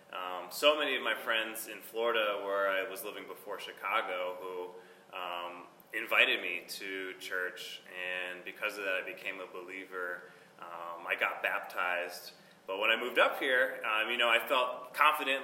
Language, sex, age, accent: English, male, 20-39, American